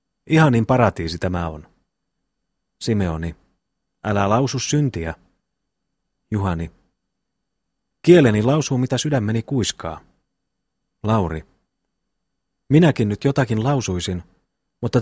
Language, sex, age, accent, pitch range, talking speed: Finnish, male, 30-49, native, 90-130 Hz, 80 wpm